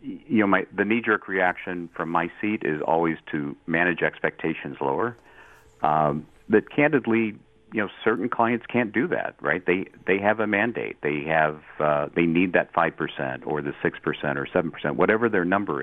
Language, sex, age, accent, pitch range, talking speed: English, male, 50-69, American, 75-95 Hz, 185 wpm